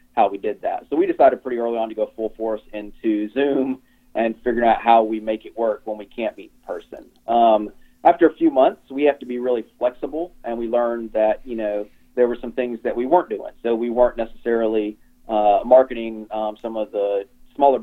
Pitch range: 110-130 Hz